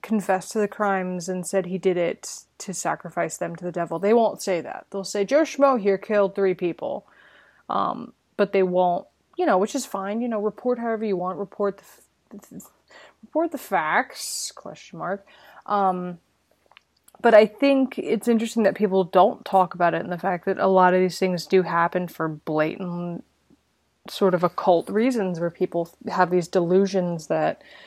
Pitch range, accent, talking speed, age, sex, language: 180-210 Hz, American, 180 wpm, 20-39, female, English